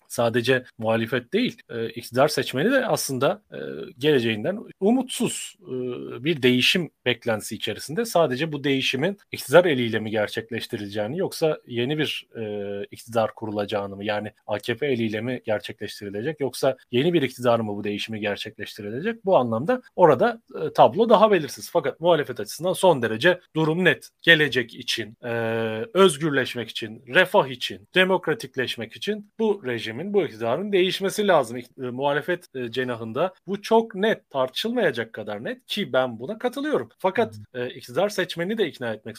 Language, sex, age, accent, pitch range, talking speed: Turkish, male, 40-59, native, 115-170 Hz, 135 wpm